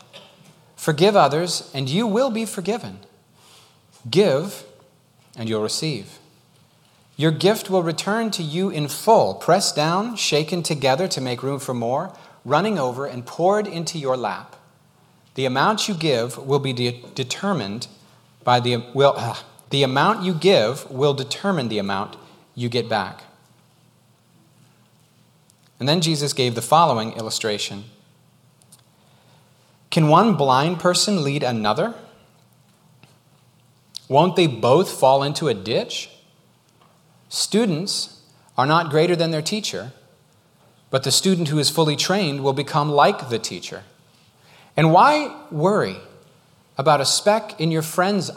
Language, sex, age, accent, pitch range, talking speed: English, male, 40-59, American, 130-185 Hz, 130 wpm